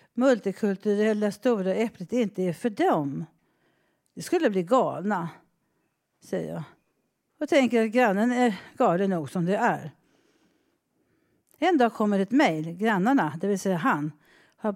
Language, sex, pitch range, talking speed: Swedish, female, 185-255 Hz, 140 wpm